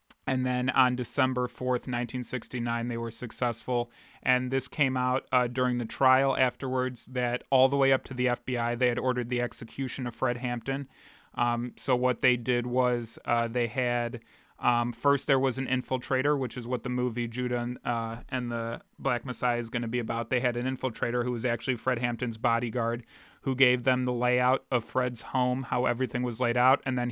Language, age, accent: English, 20-39, American